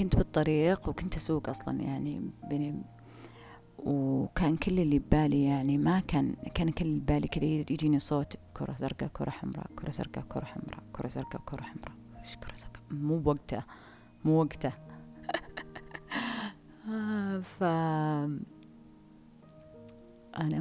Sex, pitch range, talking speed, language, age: female, 115-150 Hz, 120 wpm, Arabic, 30-49